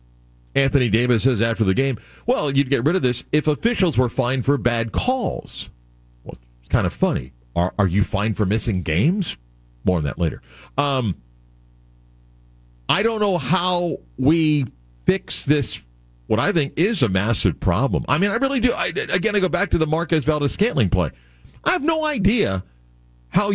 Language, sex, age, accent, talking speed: English, male, 50-69, American, 180 wpm